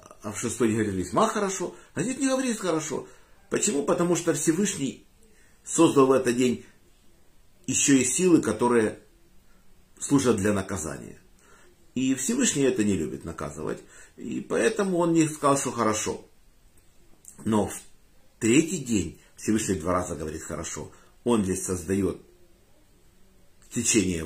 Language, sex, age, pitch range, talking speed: Russian, male, 50-69, 95-145 Hz, 130 wpm